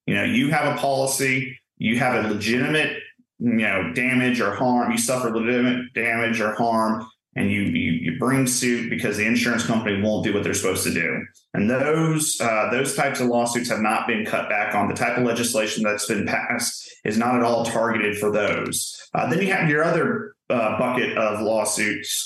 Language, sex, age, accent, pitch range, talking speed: English, male, 30-49, American, 105-125 Hz, 200 wpm